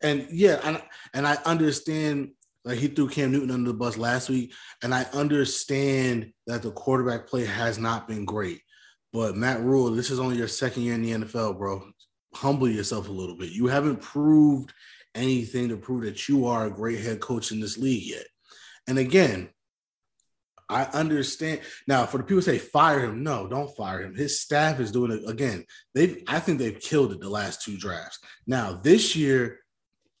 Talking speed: 195 wpm